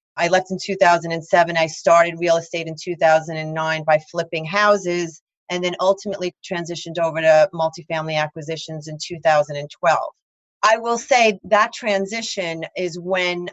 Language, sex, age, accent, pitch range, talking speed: English, female, 30-49, American, 165-205 Hz, 135 wpm